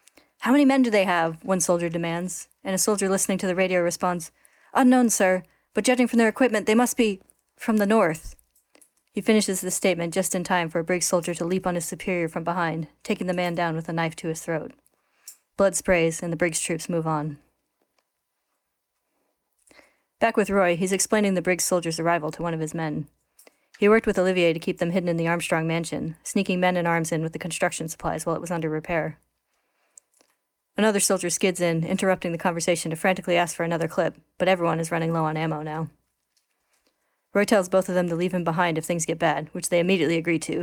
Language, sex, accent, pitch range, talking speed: English, female, American, 165-190 Hz, 215 wpm